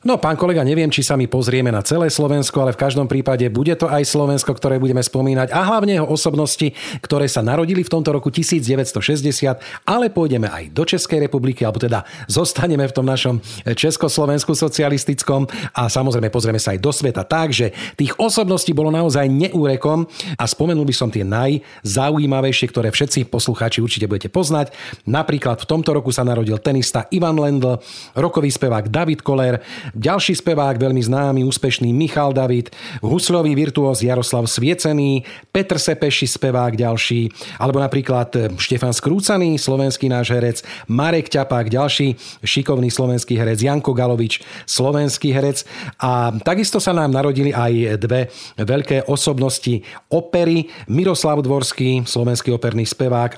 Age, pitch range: 40-59, 125-150 Hz